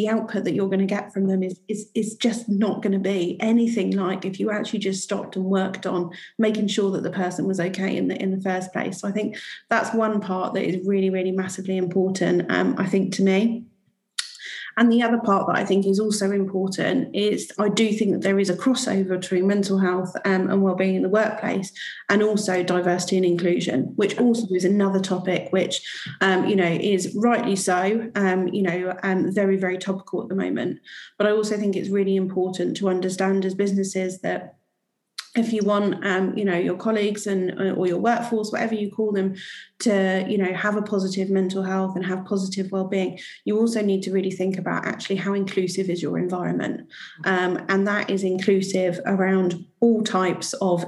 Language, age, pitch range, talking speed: English, 30-49, 185-210 Hz, 205 wpm